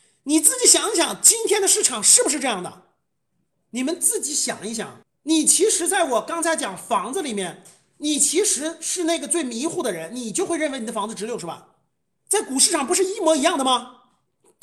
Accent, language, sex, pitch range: native, Chinese, male, 230-355 Hz